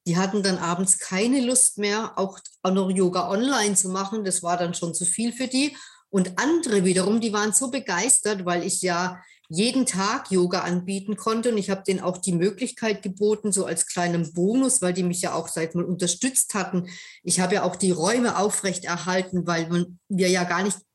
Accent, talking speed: German, 200 wpm